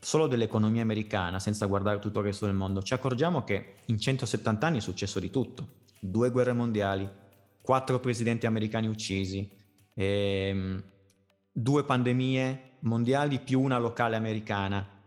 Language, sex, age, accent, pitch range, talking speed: Italian, male, 30-49, native, 105-130 Hz, 140 wpm